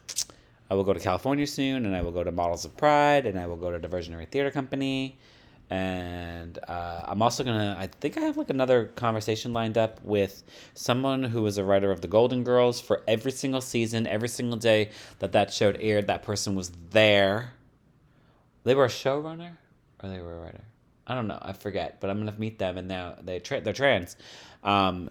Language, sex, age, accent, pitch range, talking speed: English, male, 30-49, American, 90-120 Hz, 210 wpm